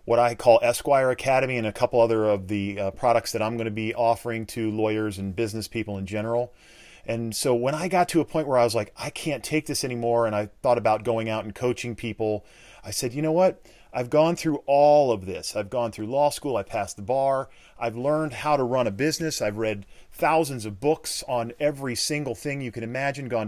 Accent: American